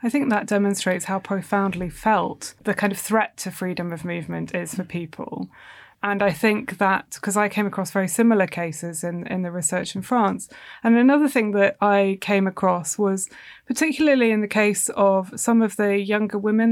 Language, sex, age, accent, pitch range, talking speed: English, female, 20-39, British, 190-220 Hz, 190 wpm